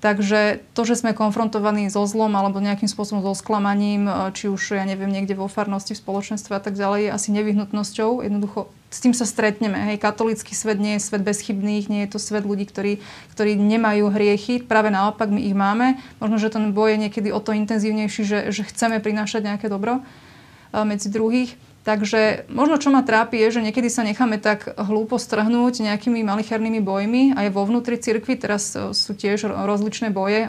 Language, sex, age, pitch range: Slovak, female, 30-49, 205-230 Hz